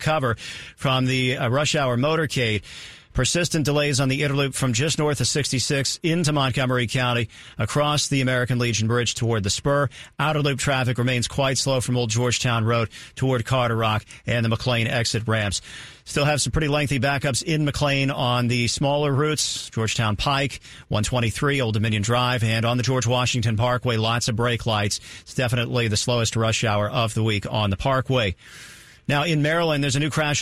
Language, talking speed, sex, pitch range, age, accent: English, 185 wpm, male, 120-145 Hz, 40-59, American